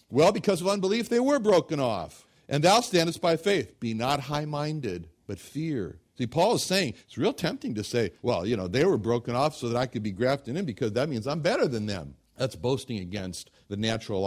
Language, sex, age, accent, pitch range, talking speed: English, male, 60-79, American, 115-170 Hz, 225 wpm